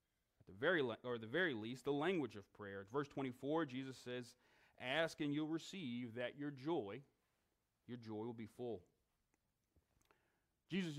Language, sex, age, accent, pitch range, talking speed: English, male, 40-59, American, 115-150 Hz, 145 wpm